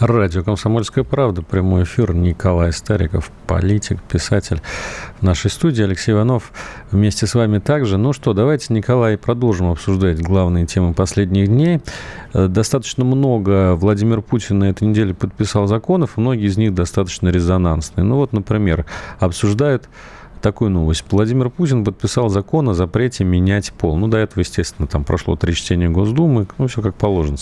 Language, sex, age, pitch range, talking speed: Russian, male, 40-59, 95-120 Hz, 150 wpm